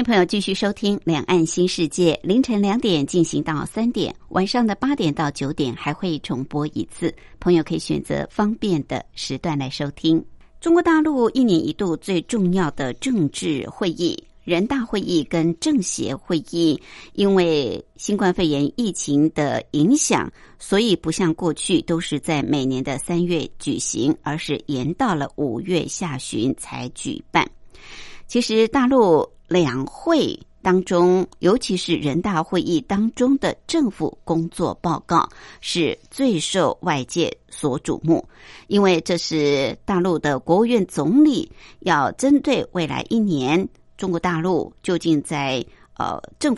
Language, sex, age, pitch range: Chinese, male, 60-79, 160-220 Hz